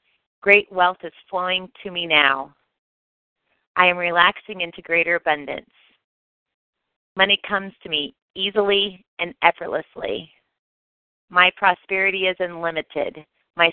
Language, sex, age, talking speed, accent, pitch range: English, female, 30-49, 110 wpm, American, 165-190 Hz